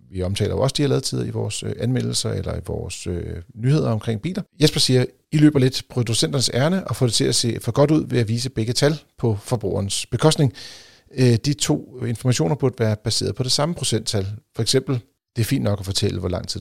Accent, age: native, 40-59